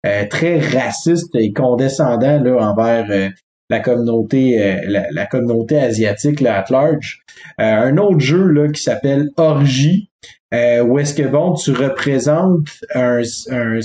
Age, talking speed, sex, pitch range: 30-49, 145 wpm, male, 120-150 Hz